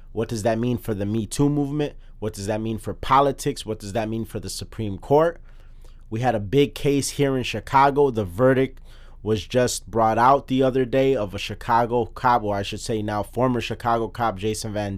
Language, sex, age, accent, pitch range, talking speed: English, male, 30-49, American, 100-120 Hz, 215 wpm